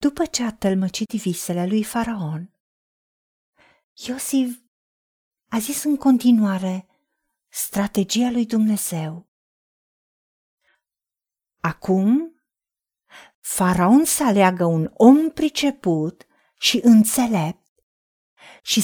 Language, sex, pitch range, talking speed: Romanian, female, 195-260 Hz, 80 wpm